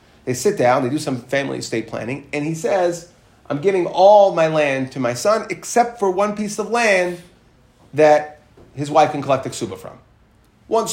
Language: English